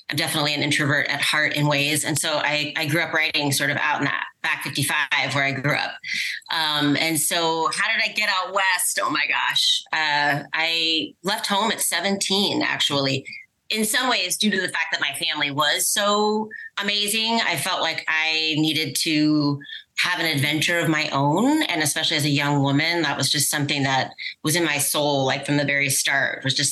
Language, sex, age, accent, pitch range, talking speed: English, female, 30-49, American, 145-175 Hz, 205 wpm